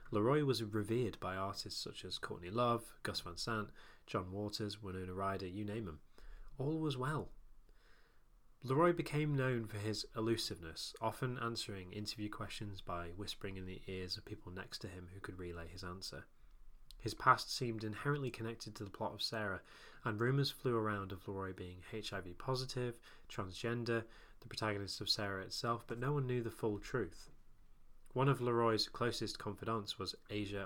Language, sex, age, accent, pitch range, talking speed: English, male, 20-39, British, 95-115 Hz, 170 wpm